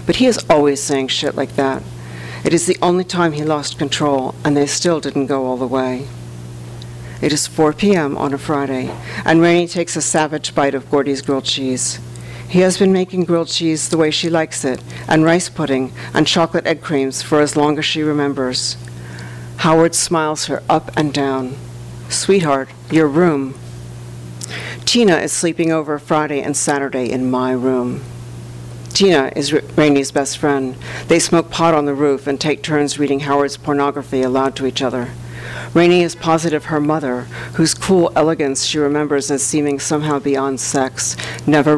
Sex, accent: female, American